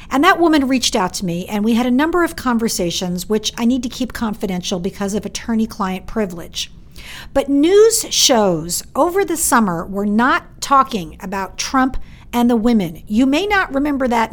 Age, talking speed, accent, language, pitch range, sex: 50-69, 185 wpm, American, English, 195-265 Hz, female